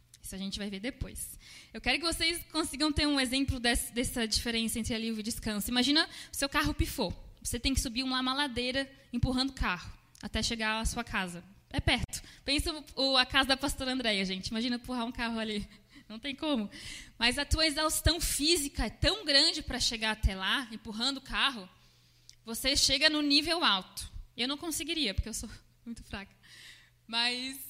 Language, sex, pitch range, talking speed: Portuguese, female, 225-285 Hz, 185 wpm